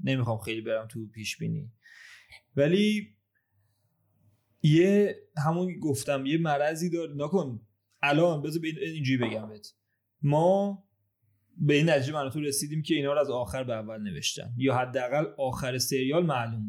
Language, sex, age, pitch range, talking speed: Persian, male, 30-49, 115-155 Hz, 145 wpm